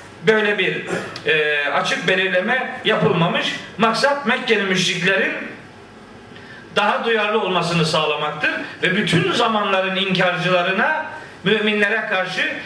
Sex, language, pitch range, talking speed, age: male, Turkish, 190-235 Hz, 85 wpm, 50-69